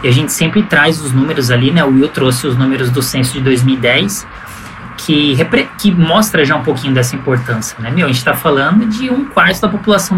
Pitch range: 130-170 Hz